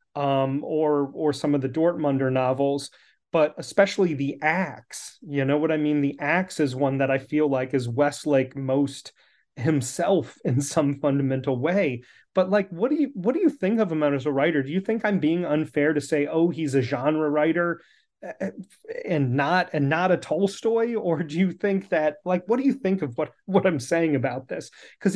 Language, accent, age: English, American, 30-49